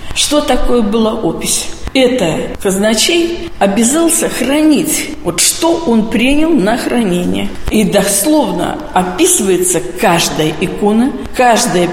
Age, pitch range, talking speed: 50-69, 180-250 Hz, 100 wpm